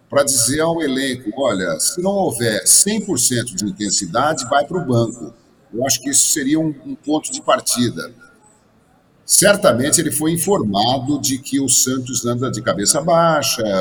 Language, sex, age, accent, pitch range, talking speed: Portuguese, male, 50-69, Brazilian, 115-185 Hz, 160 wpm